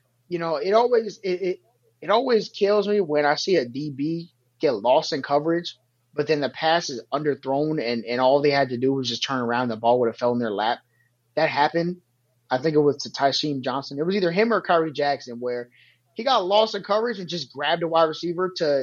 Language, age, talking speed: English, 20-39, 235 wpm